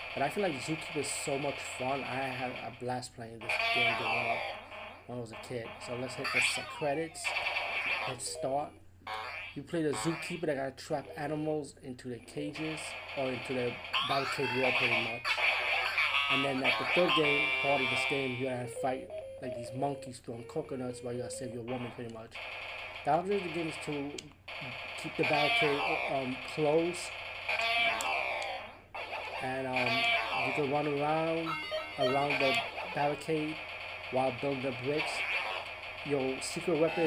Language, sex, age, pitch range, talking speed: English, male, 30-49, 125-155 Hz, 165 wpm